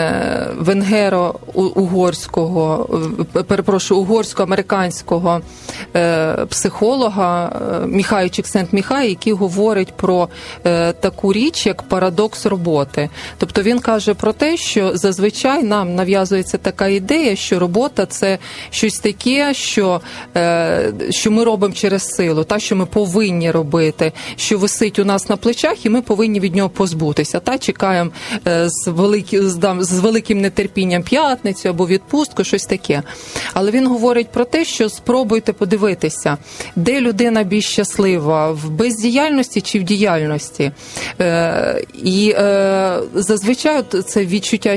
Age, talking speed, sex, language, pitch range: 20-39, 120 wpm, female, Ukrainian, 180-220 Hz